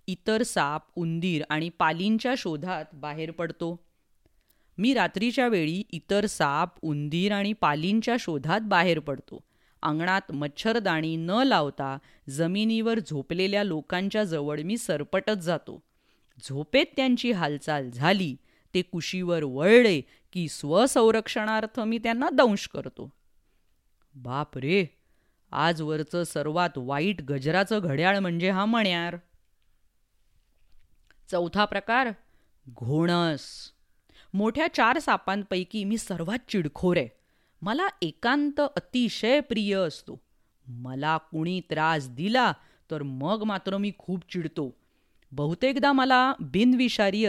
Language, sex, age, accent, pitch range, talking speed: English, female, 30-49, Indian, 155-215 Hz, 80 wpm